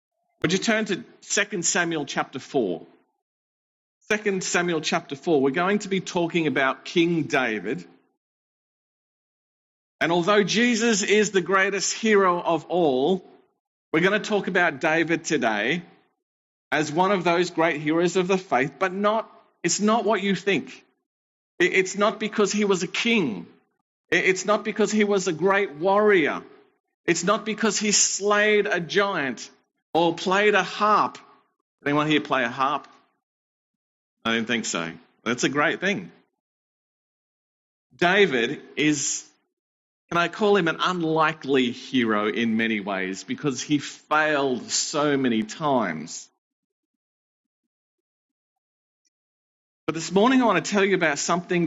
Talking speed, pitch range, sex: 140 wpm, 155-210 Hz, male